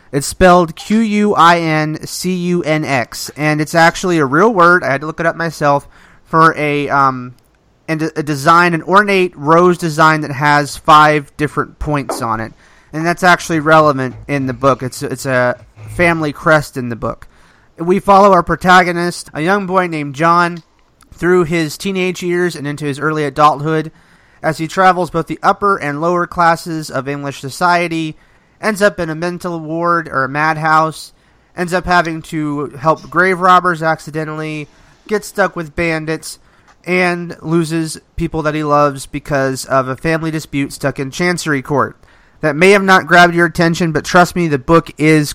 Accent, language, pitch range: American, English, 145-175 Hz